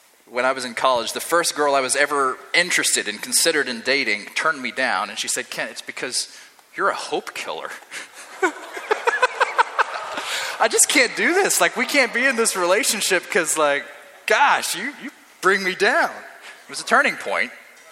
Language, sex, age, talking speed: English, male, 30-49, 185 wpm